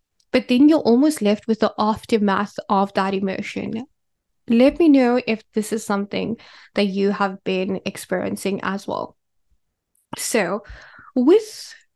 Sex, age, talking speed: female, 10-29, 135 wpm